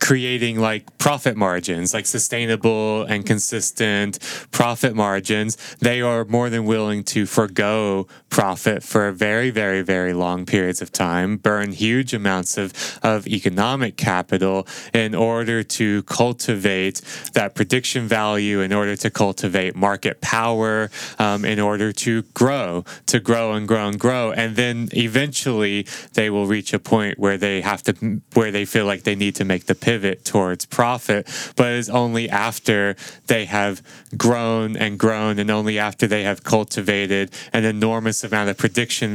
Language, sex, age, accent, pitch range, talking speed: English, male, 20-39, American, 100-115 Hz, 155 wpm